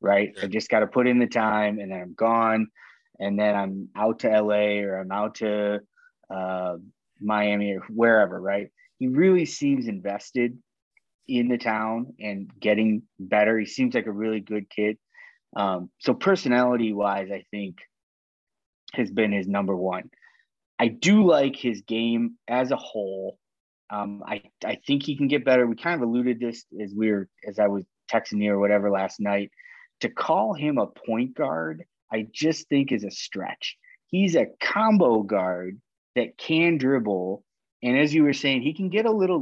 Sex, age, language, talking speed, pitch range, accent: male, 20-39, English, 180 wpm, 100-140 Hz, American